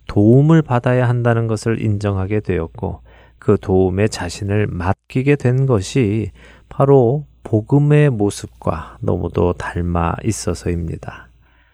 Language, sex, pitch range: Korean, male, 95-130 Hz